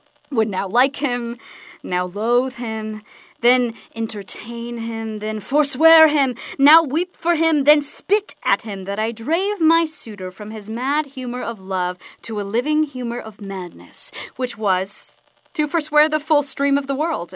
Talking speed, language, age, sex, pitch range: 165 wpm, English, 30-49, female, 210-300 Hz